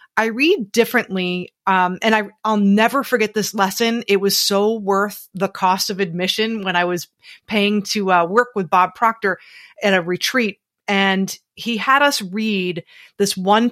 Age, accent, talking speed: 30-49, American, 165 wpm